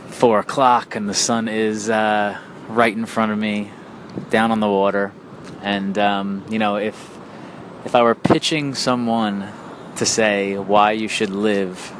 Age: 20-39